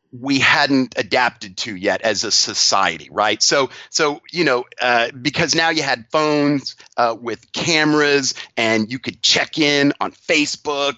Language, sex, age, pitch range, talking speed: English, male, 40-59, 115-155 Hz, 160 wpm